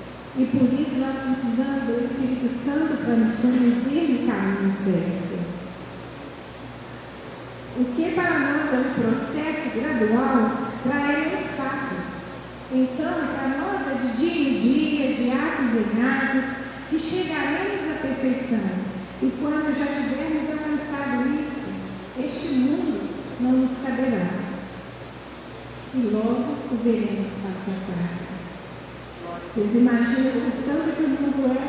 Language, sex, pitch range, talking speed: Portuguese, female, 225-290 Hz, 130 wpm